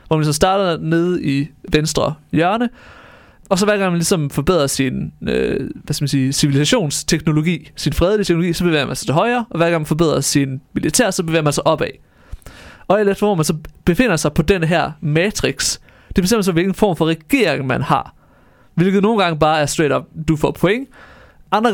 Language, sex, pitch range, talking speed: Danish, male, 145-185 Hz, 210 wpm